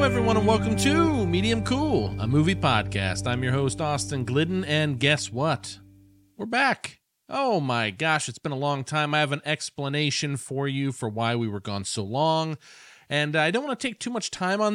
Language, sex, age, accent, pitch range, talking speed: English, male, 40-59, American, 125-180 Hz, 210 wpm